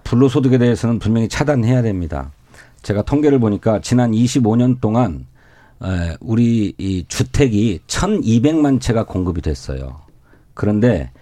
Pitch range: 105-145 Hz